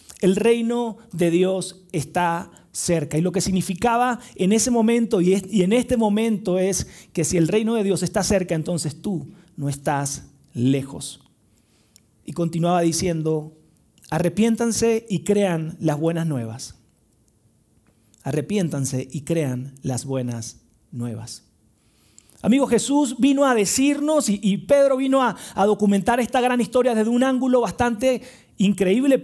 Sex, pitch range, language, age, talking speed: male, 150-240 Hz, Spanish, 40-59, 130 wpm